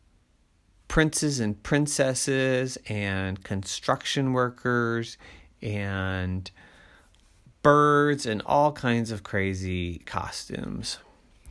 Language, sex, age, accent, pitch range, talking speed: English, male, 30-49, American, 95-135 Hz, 75 wpm